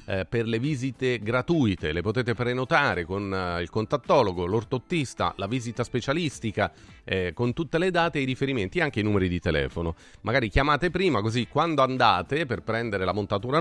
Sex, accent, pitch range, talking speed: male, native, 105-150 Hz, 165 wpm